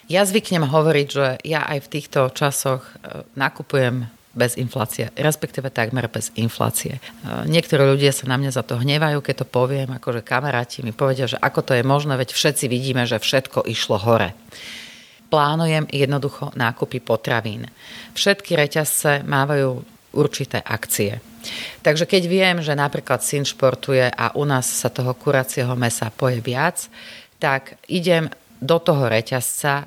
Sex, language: female, Slovak